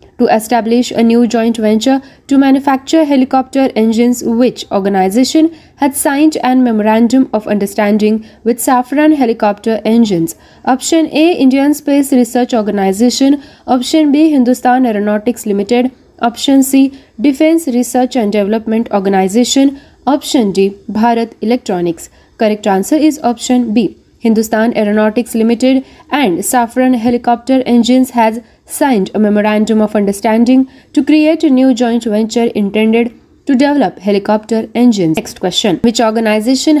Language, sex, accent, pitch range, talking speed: Marathi, female, native, 215-270 Hz, 125 wpm